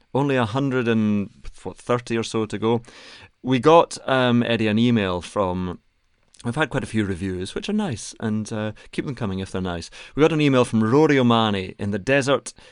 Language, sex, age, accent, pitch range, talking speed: English, male, 30-49, British, 100-130 Hz, 190 wpm